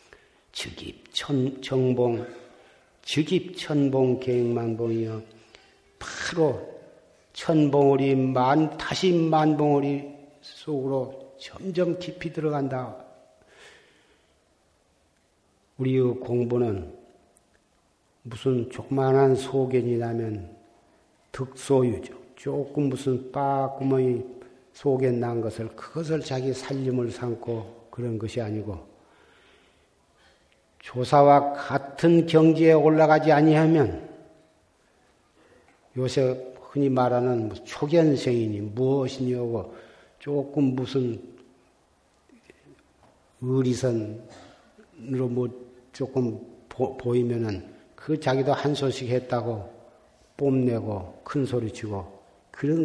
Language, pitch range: Korean, 120-145 Hz